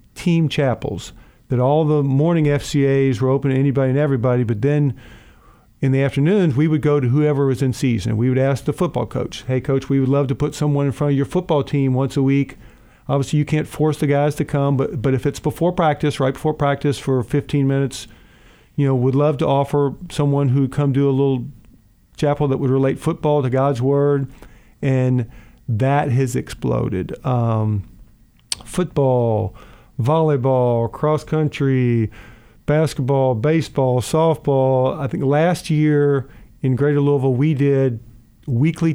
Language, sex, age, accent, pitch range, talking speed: English, male, 50-69, American, 130-150 Hz, 170 wpm